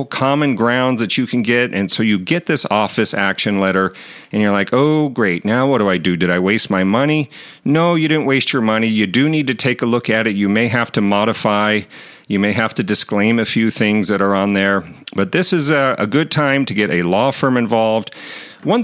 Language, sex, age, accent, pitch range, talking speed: English, male, 40-59, American, 100-130 Hz, 240 wpm